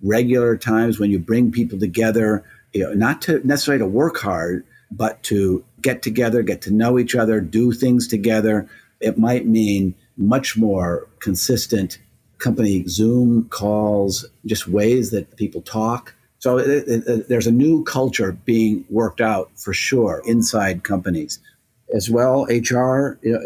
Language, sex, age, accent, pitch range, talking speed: English, male, 50-69, American, 105-120 Hz, 155 wpm